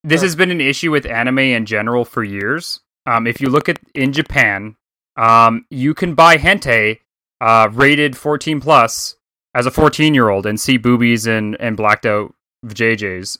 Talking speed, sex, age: 180 wpm, male, 30-49